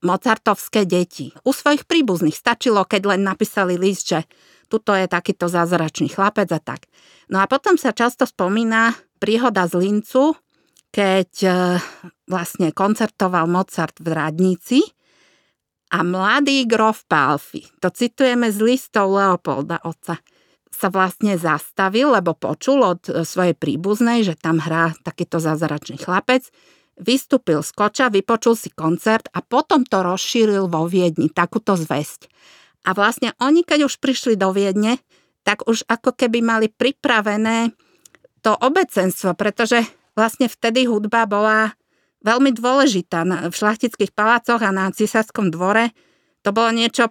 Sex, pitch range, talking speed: female, 185-235 Hz, 130 wpm